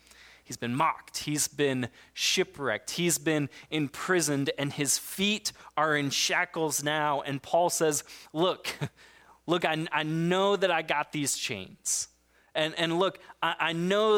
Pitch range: 135-175 Hz